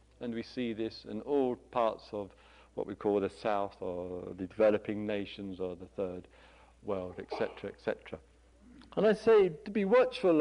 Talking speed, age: 165 wpm, 60-79